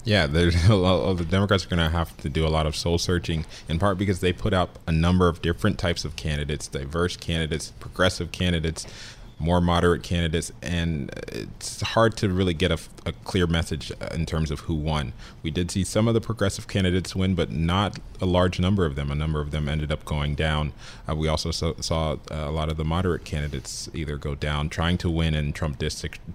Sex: male